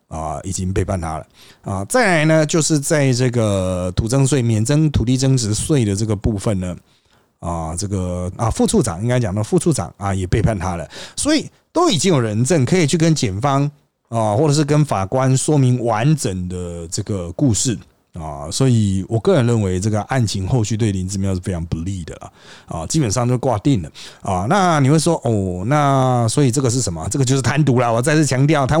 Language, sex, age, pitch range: Chinese, male, 30-49, 105-165 Hz